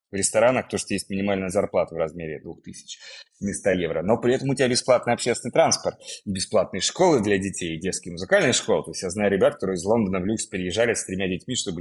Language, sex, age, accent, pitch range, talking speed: Russian, male, 30-49, native, 95-115 Hz, 220 wpm